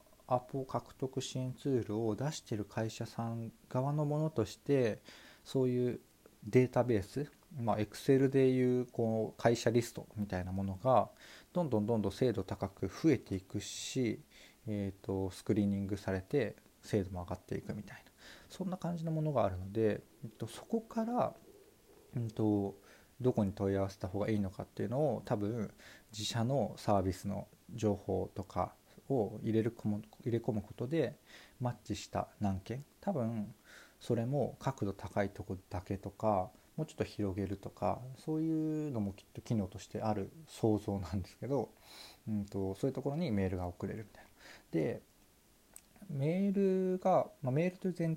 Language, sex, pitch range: Japanese, male, 100-130 Hz